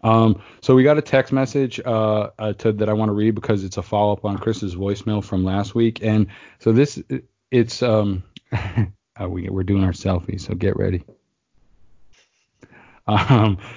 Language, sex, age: English, male, 20-39